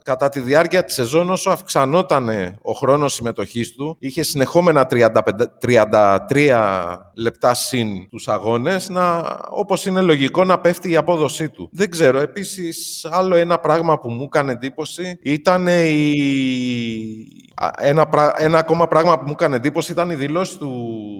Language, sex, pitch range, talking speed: Greek, male, 115-165 Hz, 145 wpm